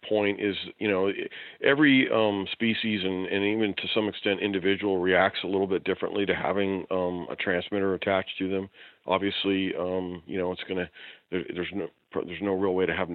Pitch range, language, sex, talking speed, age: 90-105 Hz, English, male, 190 wpm, 40-59